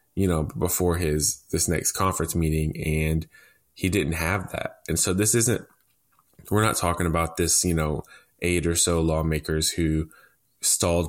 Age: 20-39